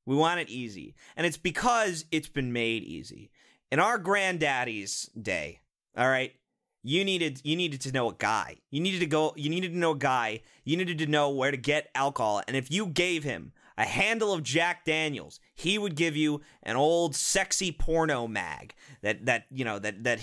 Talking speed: 200 wpm